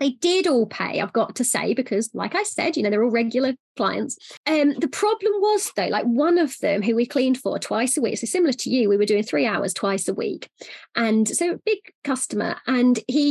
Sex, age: female, 30-49